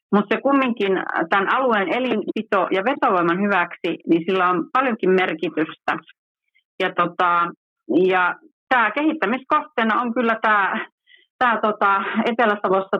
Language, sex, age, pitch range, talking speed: Finnish, female, 40-59, 180-235 Hz, 115 wpm